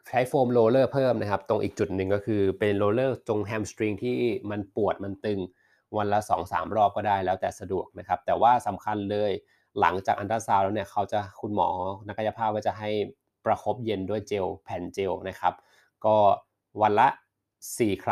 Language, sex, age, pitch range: Thai, male, 20-39, 100-110 Hz